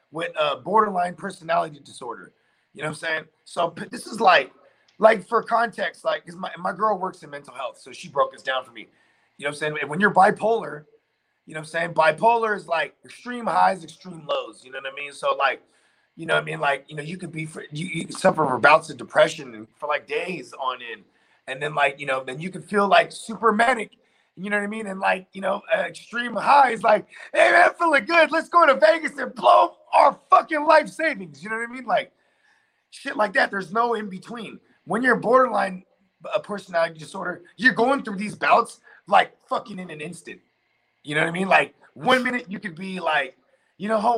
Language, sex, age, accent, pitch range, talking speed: English, male, 30-49, American, 165-250 Hz, 230 wpm